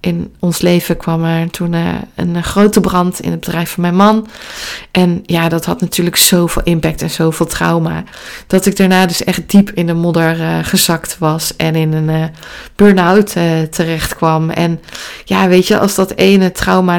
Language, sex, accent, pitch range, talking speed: Dutch, female, Dutch, 175-205 Hz, 175 wpm